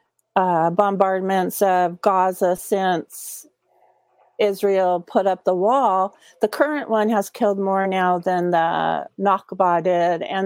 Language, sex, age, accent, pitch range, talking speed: English, female, 50-69, American, 185-225 Hz, 125 wpm